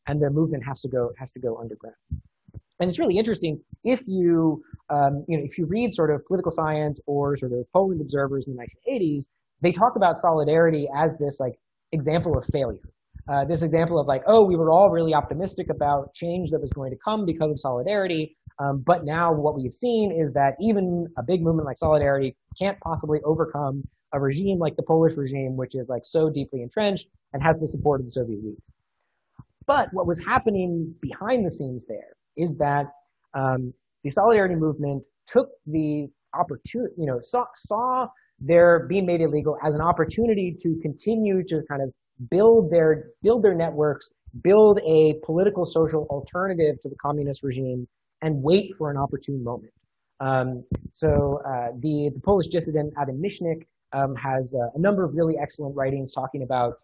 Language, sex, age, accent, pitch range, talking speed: English, male, 20-39, American, 140-175 Hz, 185 wpm